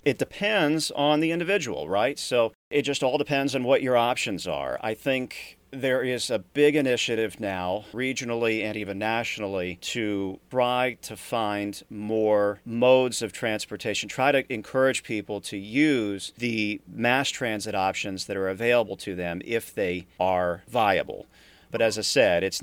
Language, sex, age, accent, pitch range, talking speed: English, male, 40-59, American, 105-135 Hz, 160 wpm